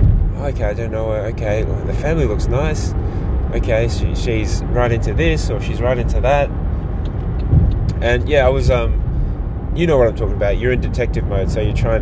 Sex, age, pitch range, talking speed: male, 20-39, 95-120 Hz, 185 wpm